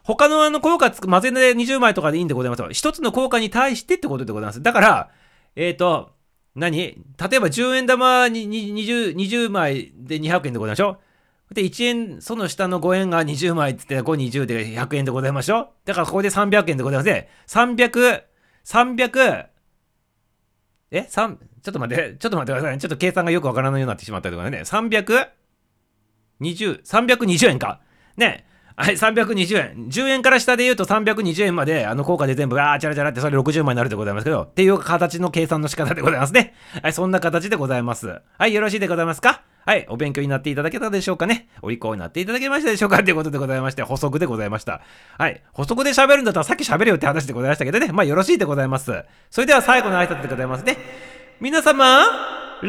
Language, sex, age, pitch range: Japanese, male, 40-59, 145-240 Hz